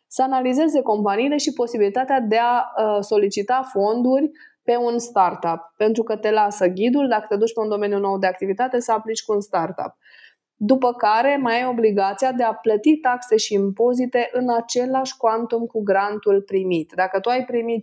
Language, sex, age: Romanian, female, 20-39